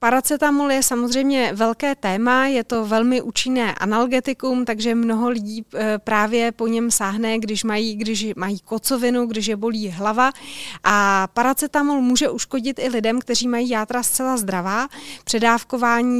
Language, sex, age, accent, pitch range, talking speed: Czech, female, 30-49, native, 220-255 Hz, 135 wpm